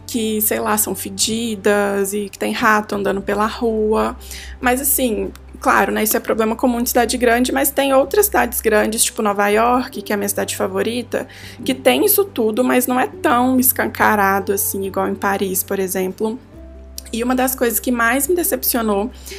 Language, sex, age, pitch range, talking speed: Portuguese, female, 20-39, 205-250 Hz, 185 wpm